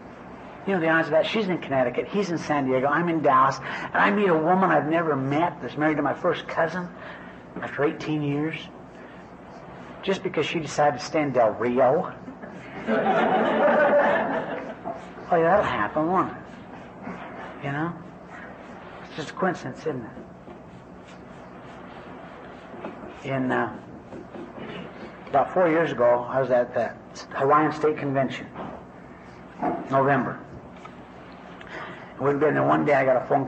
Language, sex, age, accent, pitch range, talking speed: English, male, 60-79, American, 120-155 Hz, 135 wpm